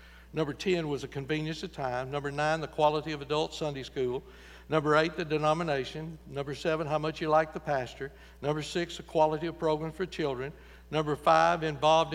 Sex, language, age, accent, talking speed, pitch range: male, English, 60-79, American, 190 wpm, 140-195 Hz